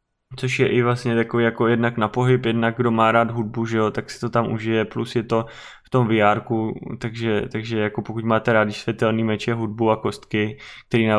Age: 20-39